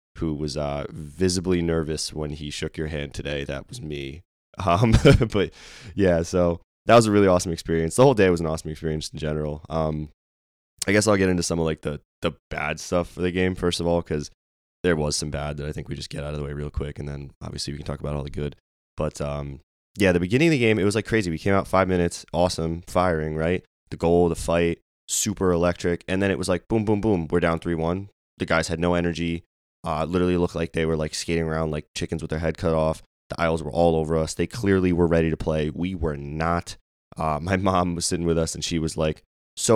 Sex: male